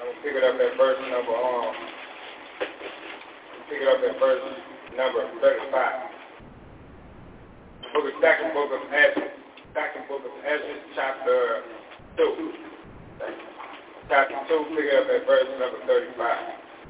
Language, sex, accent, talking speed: English, male, American, 60 wpm